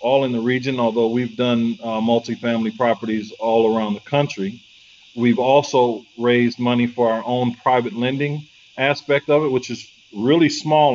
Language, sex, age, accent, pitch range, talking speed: English, male, 40-59, American, 115-135 Hz, 165 wpm